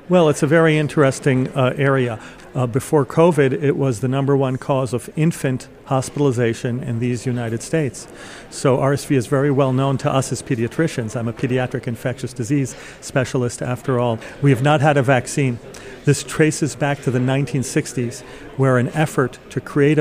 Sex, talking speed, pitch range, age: male, 175 wpm, 125-140 Hz, 40-59